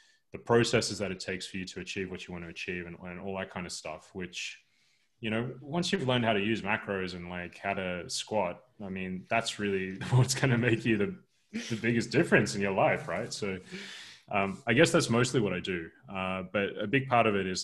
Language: English